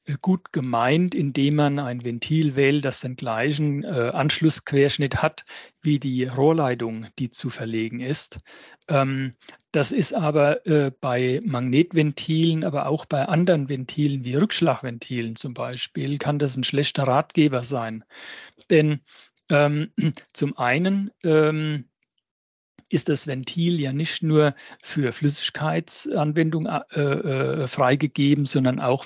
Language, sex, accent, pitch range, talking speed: German, male, German, 130-155 Hz, 125 wpm